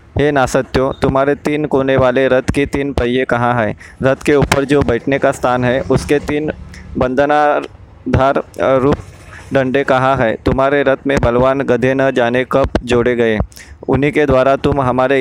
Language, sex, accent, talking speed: Hindi, male, native, 165 wpm